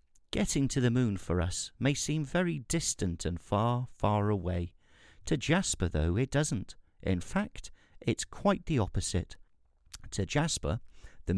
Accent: British